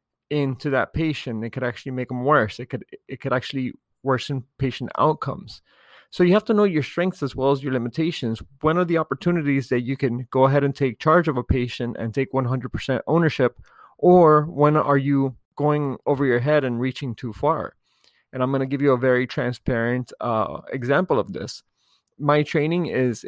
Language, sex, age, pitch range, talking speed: English, male, 30-49, 125-145 Hz, 195 wpm